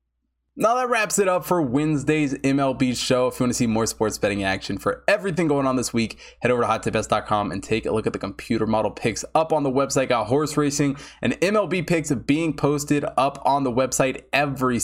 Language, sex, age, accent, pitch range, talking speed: English, male, 20-39, American, 115-145 Hz, 220 wpm